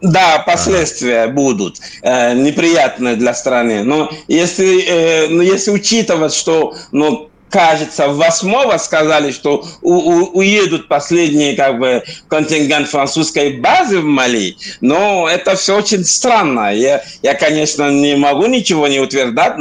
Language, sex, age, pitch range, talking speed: Russian, male, 50-69, 155-200 Hz, 140 wpm